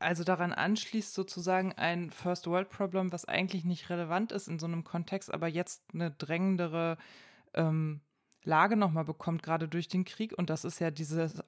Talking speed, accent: 165 wpm, German